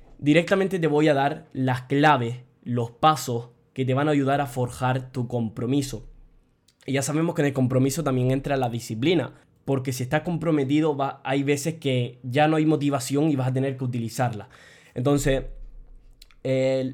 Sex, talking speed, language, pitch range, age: male, 170 wpm, Spanish, 125-145 Hz, 20-39